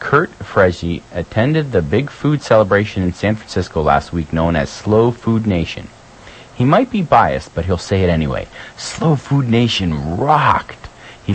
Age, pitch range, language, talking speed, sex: 30-49, 85-115 Hz, English, 165 wpm, male